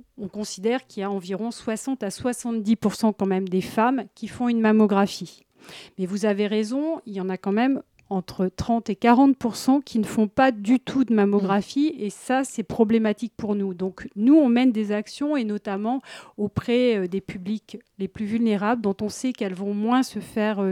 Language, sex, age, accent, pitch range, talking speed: French, female, 40-59, French, 200-245 Hz, 195 wpm